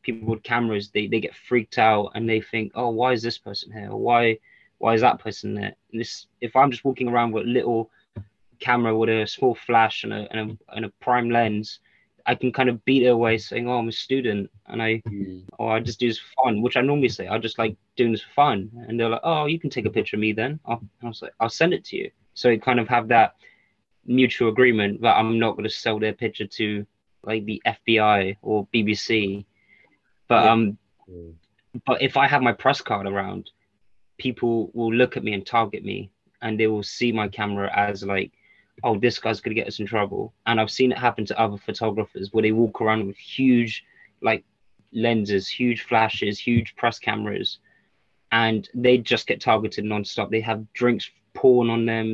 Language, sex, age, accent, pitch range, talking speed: English, male, 20-39, British, 105-120 Hz, 220 wpm